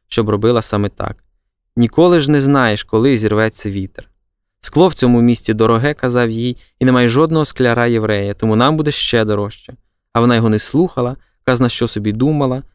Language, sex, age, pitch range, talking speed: Ukrainian, male, 20-39, 105-135 Hz, 185 wpm